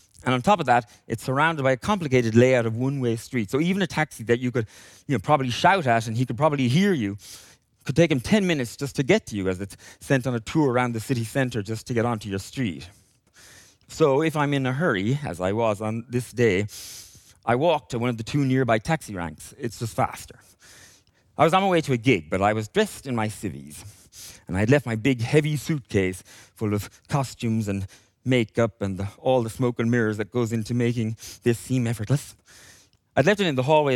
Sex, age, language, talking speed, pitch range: male, 30-49, English, 230 wpm, 105-135 Hz